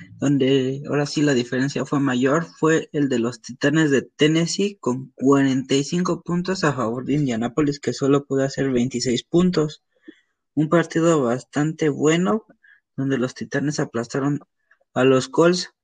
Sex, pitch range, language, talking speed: male, 140-175 Hz, Spanish, 145 wpm